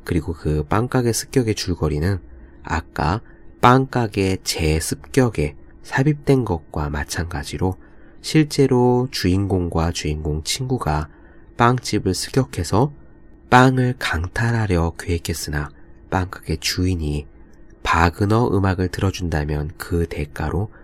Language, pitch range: Korean, 75-110 Hz